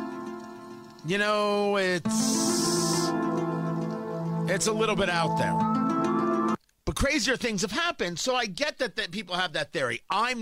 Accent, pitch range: American, 145-200 Hz